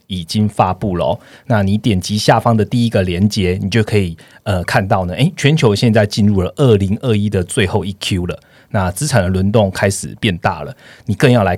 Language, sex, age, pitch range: Chinese, male, 30-49, 95-125 Hz